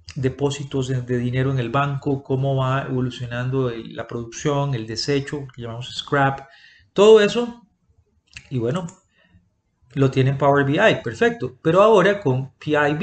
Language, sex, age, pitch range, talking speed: Spanish, male, 30-49, 125-160 Hz, 140 wpm